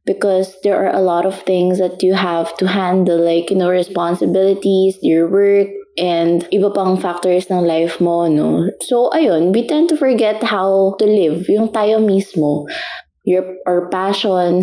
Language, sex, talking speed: English, female, 165 wpm